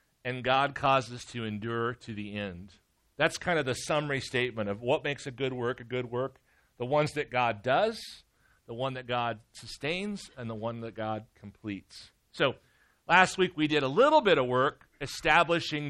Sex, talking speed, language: male, 190 wpm, English